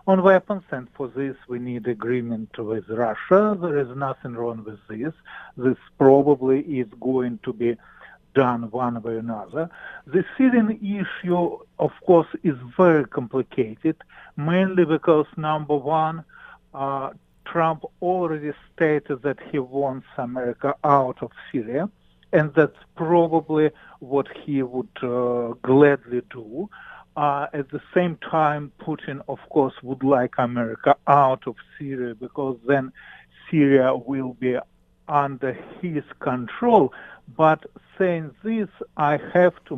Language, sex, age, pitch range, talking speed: English, male, 50-69, 125-165 Hz, 130 wpm